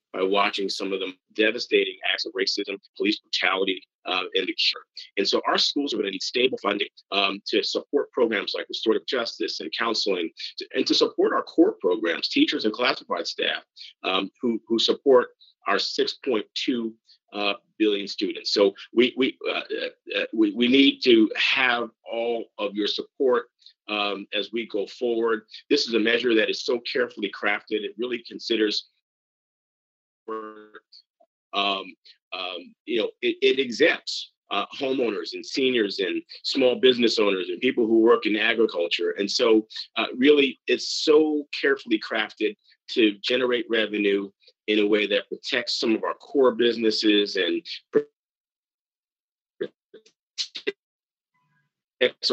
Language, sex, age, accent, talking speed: English, male, 50-69, American, 140 wpm